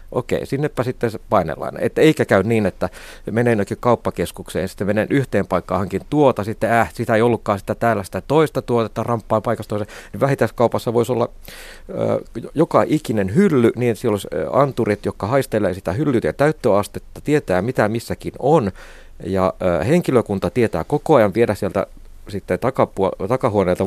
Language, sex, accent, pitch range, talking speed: Finnish, male, native, 100-125 Hz, 160 wpm